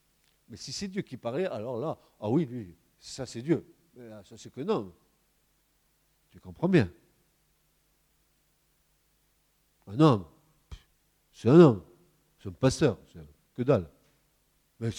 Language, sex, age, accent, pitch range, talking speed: French, male, 50-69, French, 100-120 Hz, 145 wpm